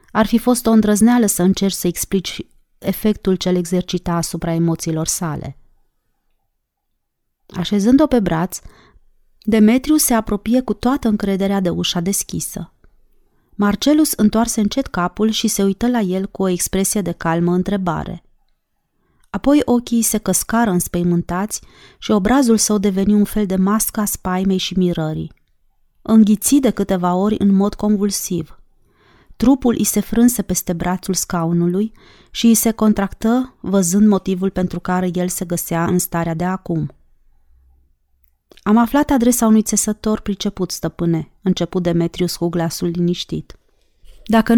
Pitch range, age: 175-220 Hz, 30-49